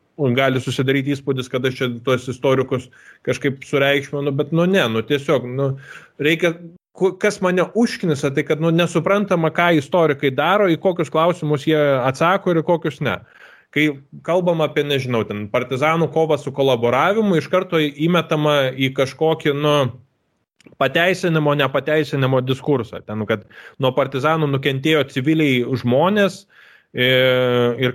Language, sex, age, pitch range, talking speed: English, male, 20-39, 130-165 Hz, 135 wpm